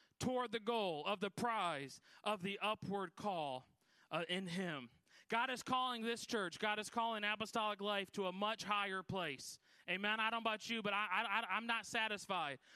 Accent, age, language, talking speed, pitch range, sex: American, 30-49, English, 190 wpm, 195-230 Hz, male